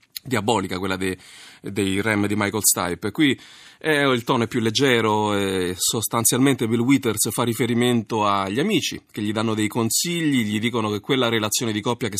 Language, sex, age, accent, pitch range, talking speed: Italian, male, 30-49, native, 105-135 Hz, 170 wpm